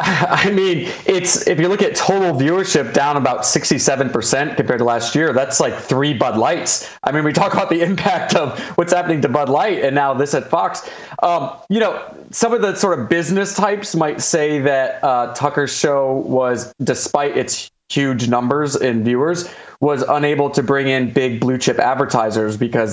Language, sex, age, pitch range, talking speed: English, male, 30-49, 125-165 Hz, 195 wpm